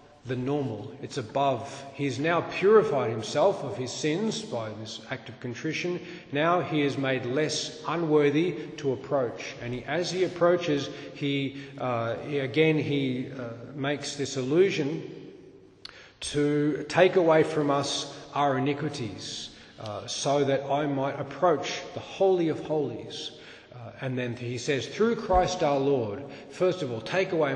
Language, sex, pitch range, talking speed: English, male, 125-155 Hz, 150 wpm